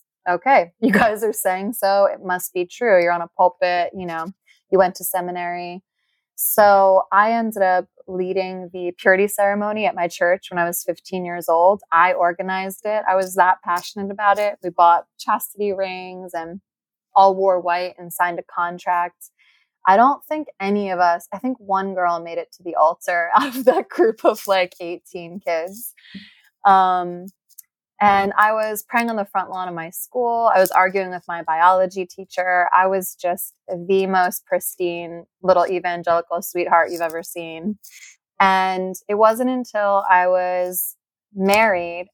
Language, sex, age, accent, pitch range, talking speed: English, female, 20-39, American, 175-200 Hz, 170 wpm